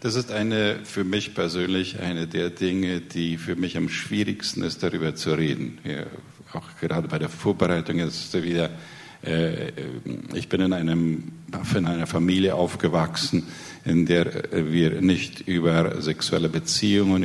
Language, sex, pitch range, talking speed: Spanish, male, 85-95 Hz, 150 wpm